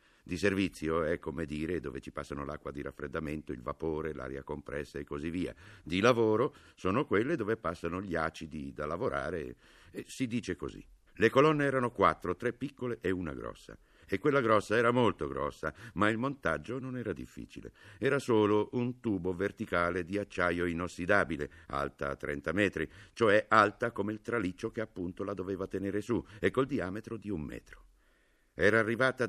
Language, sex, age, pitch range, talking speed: Italian, male, 60-79, 85-115 Hz, 170 wpm